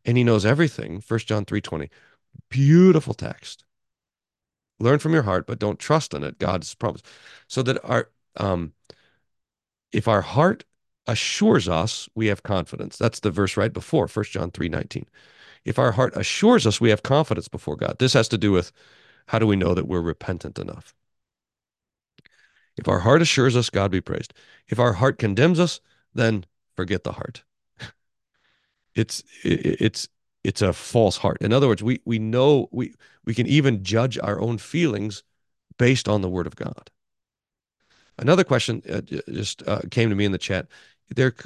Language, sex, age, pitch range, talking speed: English, male, 40-59, 100-130 Hz, 170 wpm